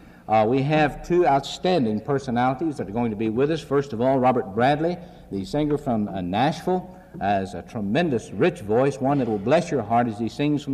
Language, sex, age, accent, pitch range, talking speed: English, male, 60-79, American, 115-150 Hz, 210 wpm